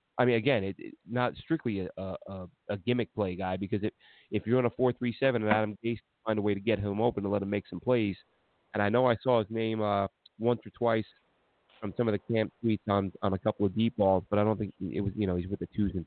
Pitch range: 95-110 Hz